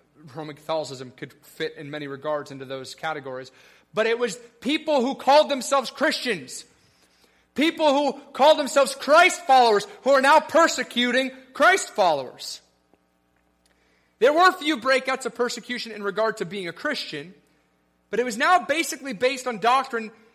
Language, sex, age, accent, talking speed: English, male, 30-49, American, 145 wpm